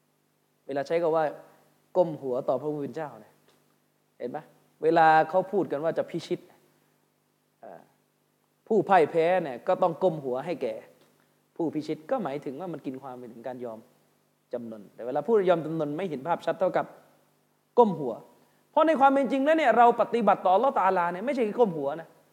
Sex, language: male, Thai